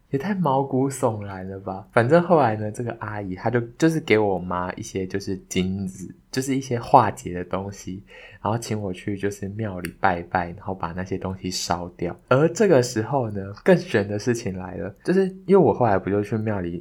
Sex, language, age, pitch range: male, Chinese, 20-39, 95-125 Hz